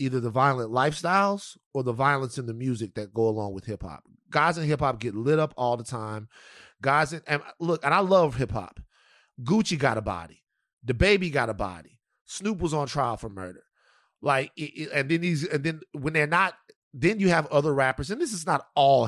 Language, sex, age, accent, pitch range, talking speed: English, male, 30-49, American, 125-175 Hz, 225 wpm